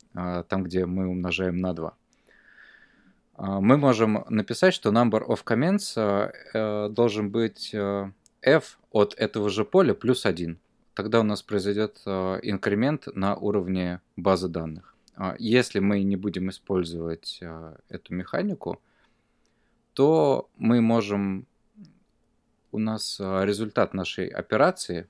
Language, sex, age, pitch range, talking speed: Russian, male, 20-39, 90-110 Hz, 110 wpm